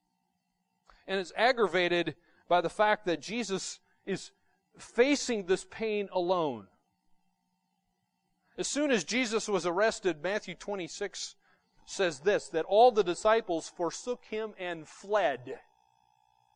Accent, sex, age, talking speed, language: American, male, 40-59, 110 wpm, English